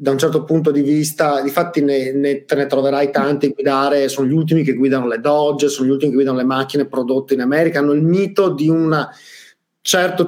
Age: 30-49